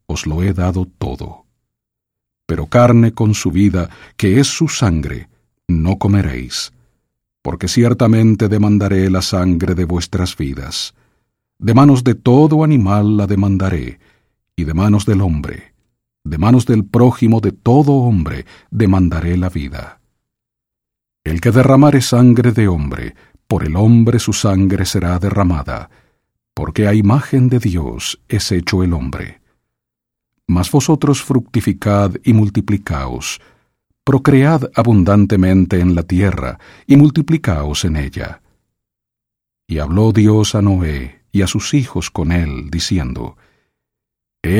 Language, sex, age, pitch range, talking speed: English, male, 50-69, 90-120 Hz, 130 wpm